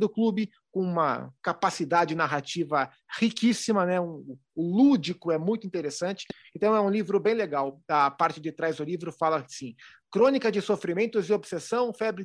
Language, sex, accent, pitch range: Portuguese, male, Brazilian, 170-215 Hz